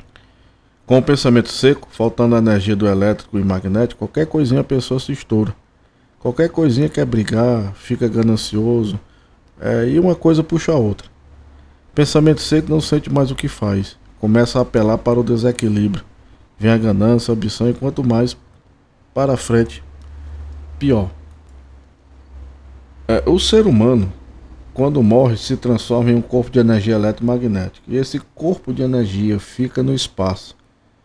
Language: Portuguese